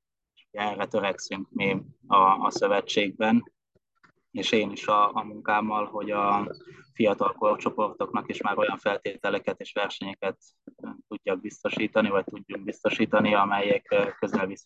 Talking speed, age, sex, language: 120 wpm, 20-39, male, Hungarian